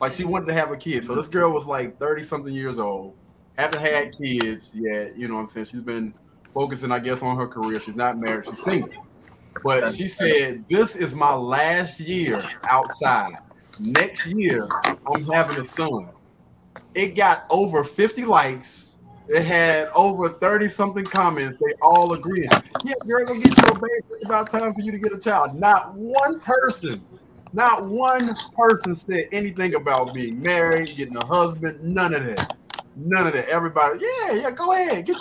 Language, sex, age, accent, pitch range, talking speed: English, male, 20-39, American, 140-215 Hz, 180 wpm